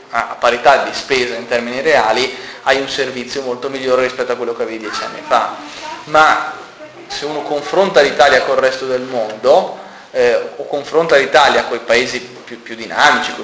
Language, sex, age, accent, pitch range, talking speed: Italian, male, 20-39, native, 120-150 Hz, 180 wpm